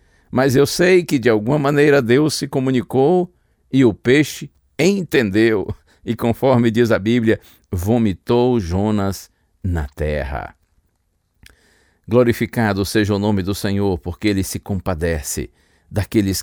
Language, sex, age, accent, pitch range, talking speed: Portuguese, male, 60-79, Brazilian, 100-135 Hz, 125 wpm